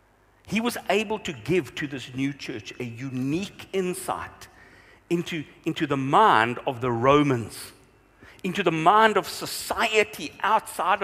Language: English